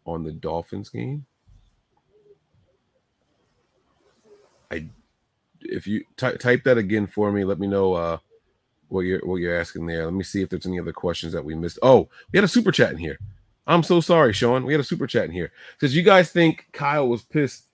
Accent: American